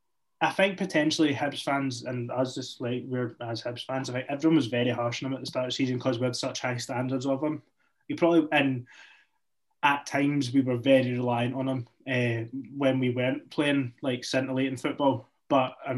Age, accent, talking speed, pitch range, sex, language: 20-39, British, 210 wpm, 125-150 Hz, male, English